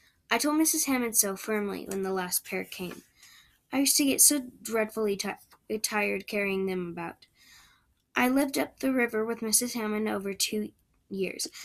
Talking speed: 170 wpm